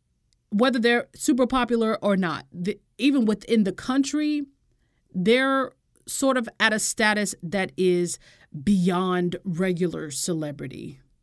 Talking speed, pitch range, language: 110 wpm, 180-235 Hz, English